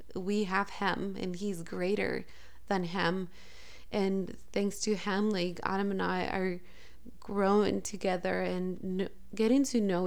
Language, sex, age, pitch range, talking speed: English, female, 20-39, 185-215 Hz, 135 wpm